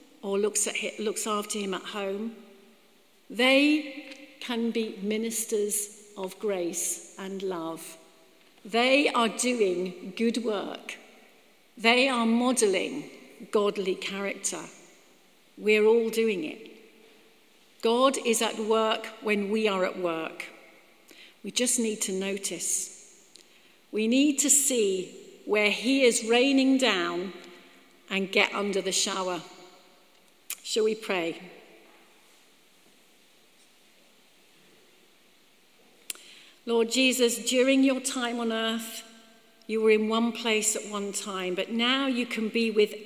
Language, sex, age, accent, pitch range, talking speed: English, female, 50-69, British, 195-240 Hz, 115 wpm